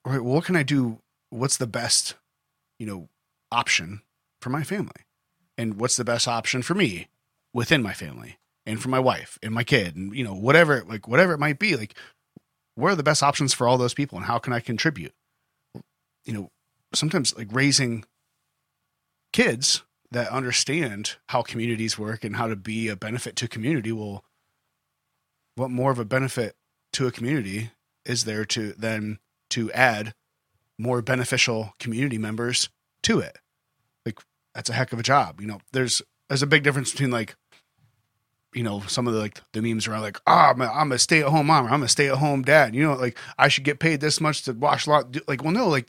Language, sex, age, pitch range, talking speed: English, male, 30-49, 110-145 Hz, 205 wpm